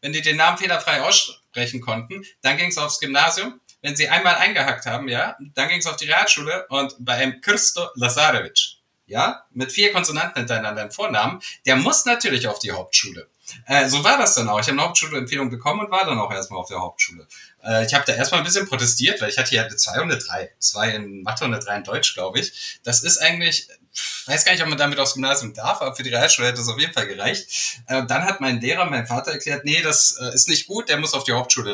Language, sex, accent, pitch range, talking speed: German, male, German, 120-155 Hz, 240 wpm